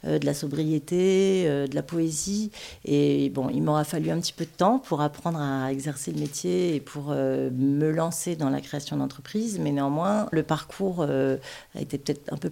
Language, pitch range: French, 140-170 Hz